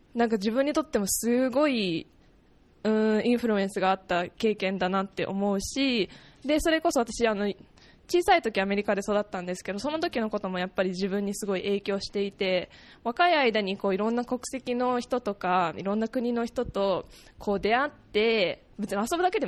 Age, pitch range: 20-39, 200-250 Hz